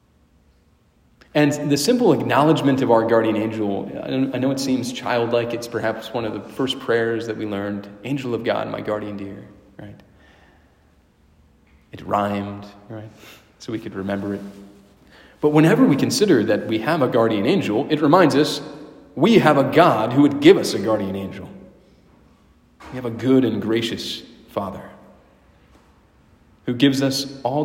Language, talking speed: English, 160 wpm